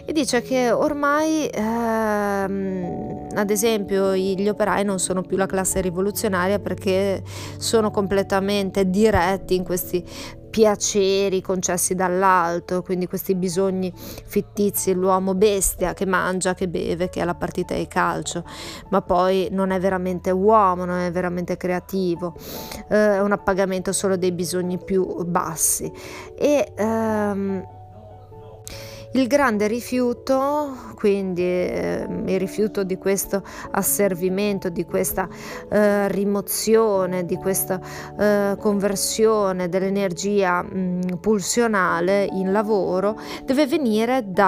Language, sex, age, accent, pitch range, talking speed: Italian, female, 20-39, native, 185-210 Hz, 115 wpm